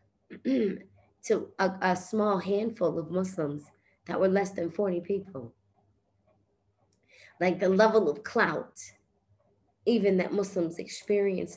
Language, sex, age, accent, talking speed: English, female, 20-39, American, 115 wpm